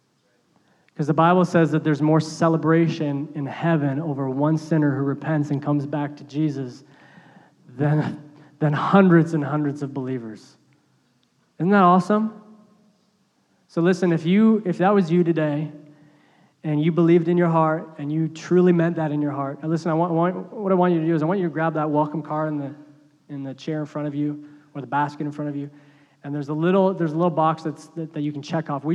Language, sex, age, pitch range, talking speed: English, male, 20-39, 150-175 Hz, 220 wpm